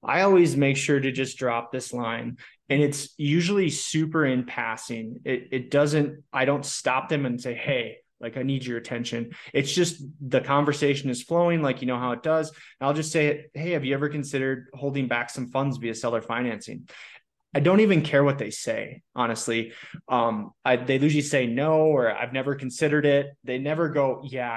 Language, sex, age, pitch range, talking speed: English, male, 20-39, 125-150 Hz, 200 wpm